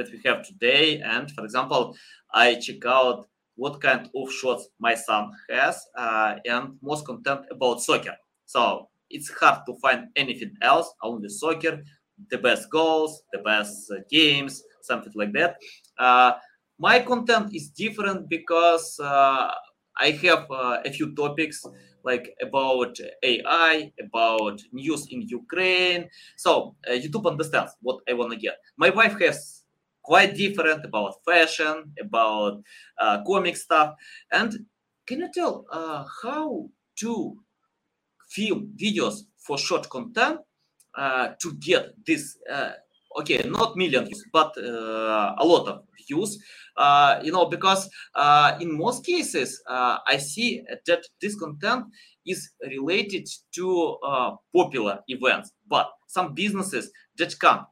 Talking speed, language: 140 wpm, English